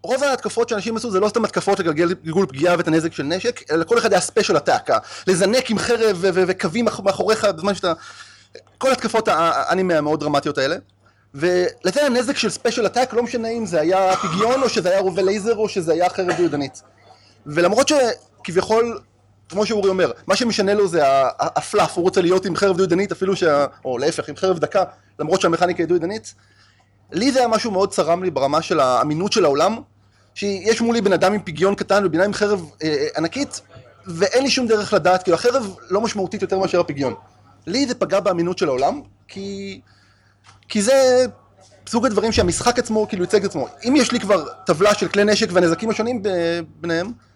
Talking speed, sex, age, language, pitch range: 165 wpm, male, 30-49, Hebrew, 165-220 Hz